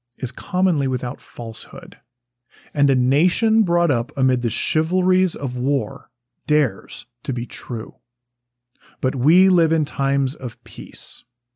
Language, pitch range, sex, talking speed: English, 120-145 Hz, male, 130 wpm